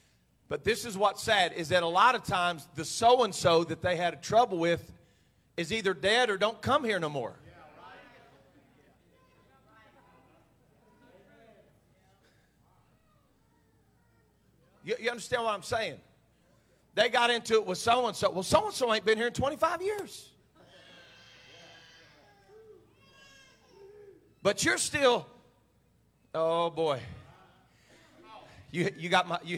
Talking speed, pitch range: 115 wpm, 180-250 Hz